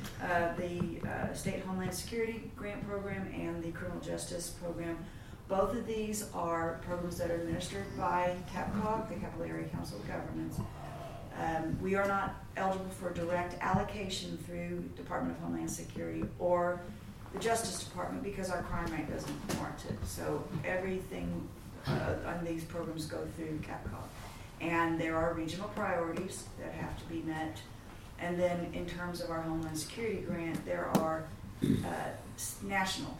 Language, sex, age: English, female, 40-59